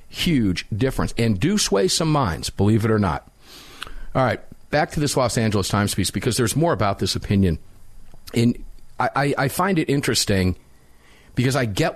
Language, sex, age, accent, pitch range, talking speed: English, male, 50-69, American, 105-145 Hz, 175 wpm